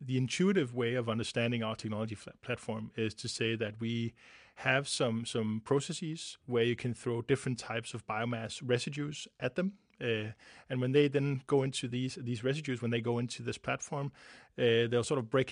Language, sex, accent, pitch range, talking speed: English, male, Danish, 115-135 Hz, 190 wpm